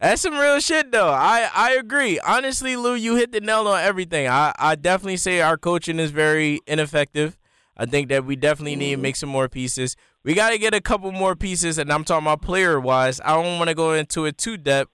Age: 20-39